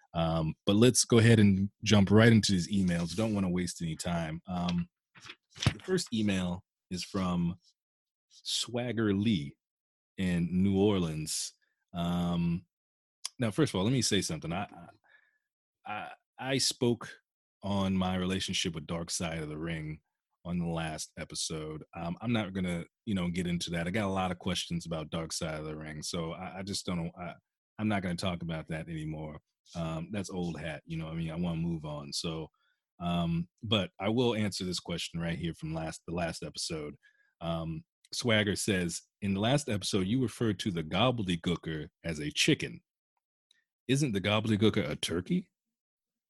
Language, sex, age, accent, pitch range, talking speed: English, male, 30-49, American, 85-110 Hz, 180 wpm